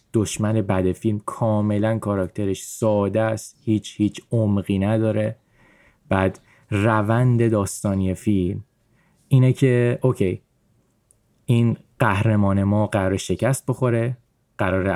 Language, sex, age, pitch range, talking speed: Persian, male, 20-39, 100-115 Hz, 100 wpm